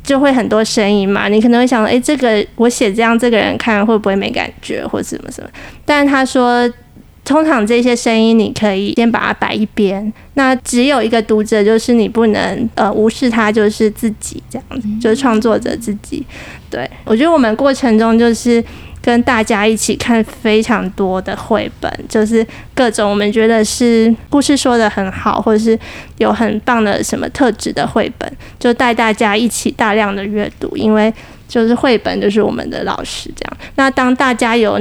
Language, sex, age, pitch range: Chinese, female, 20-39, 215-245 Hz